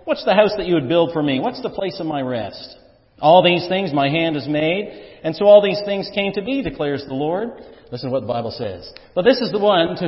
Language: English